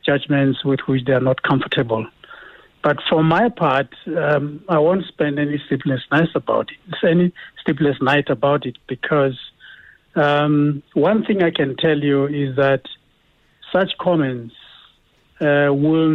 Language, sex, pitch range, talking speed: English, male, 135-170 Hz, 145 wpm